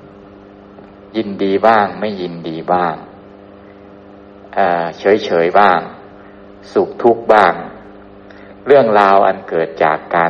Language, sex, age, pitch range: Thai, male, 60-79, 100-115 Hz